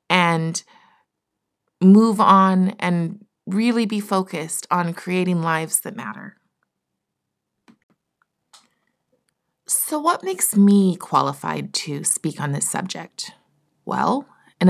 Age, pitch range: 30-49, 150-195 Hz